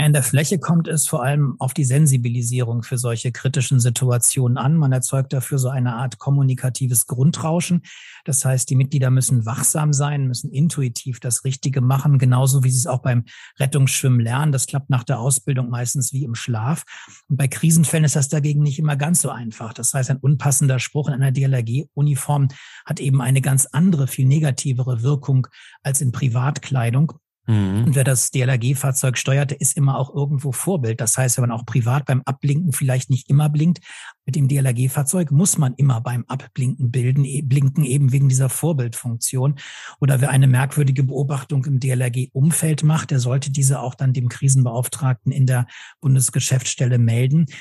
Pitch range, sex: 130-145 Hz, male